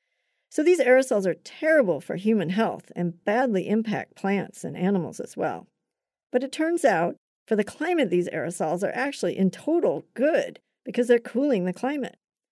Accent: American